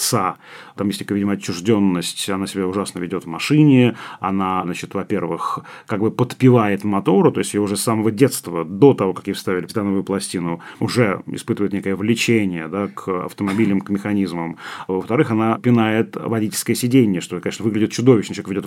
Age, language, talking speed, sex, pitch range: 30-49, Russian, 175 wpm, male, 100-125 Hz